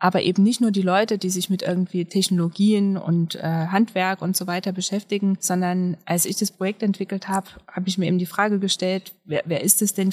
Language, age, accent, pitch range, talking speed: German, 20-39, German, 175-200 Hz, 220 wpm